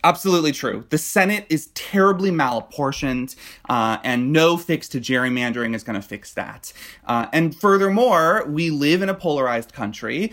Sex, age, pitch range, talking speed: male, 20-39, 125-180 Hz, 155 wpm